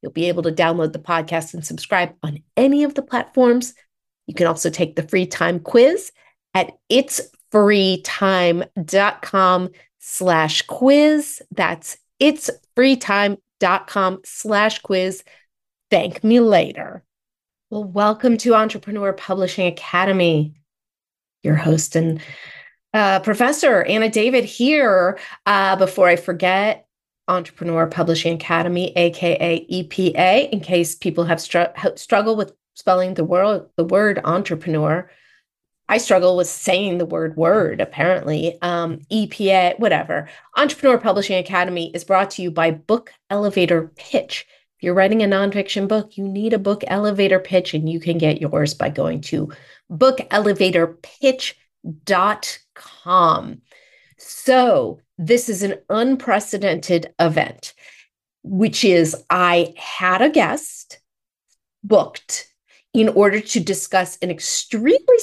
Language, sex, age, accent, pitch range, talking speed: English, female, 30-49, American, 170-220 Hz, 120 wpm